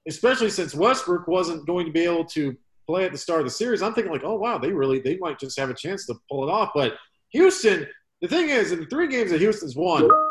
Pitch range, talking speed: 115-160 Hz, 260 wpm